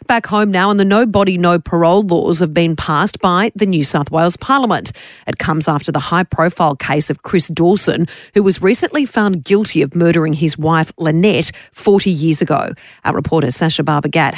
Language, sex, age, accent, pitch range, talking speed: English, female, 40-59, Australian, 175-220 Hz, 190 wpm